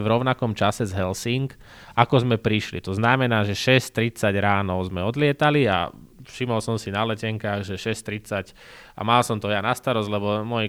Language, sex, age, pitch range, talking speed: Slovak, male, 20-39, 100-120 Hz, 180 wpm